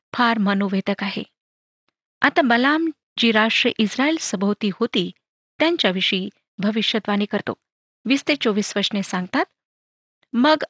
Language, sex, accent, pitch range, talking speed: Marathi, female, native, 205-275 Hz, 105 wpm